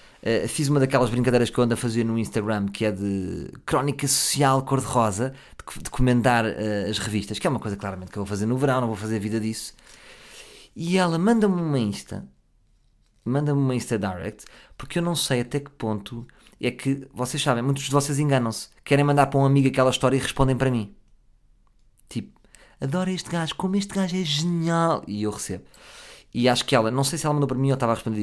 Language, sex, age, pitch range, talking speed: Portuguese, male, 20-39, 110-145 Hz, 220 wpm